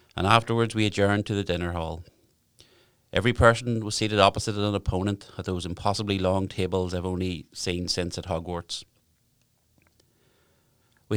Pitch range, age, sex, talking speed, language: 90-110 Hz, 30-49, male, 145 wpm, English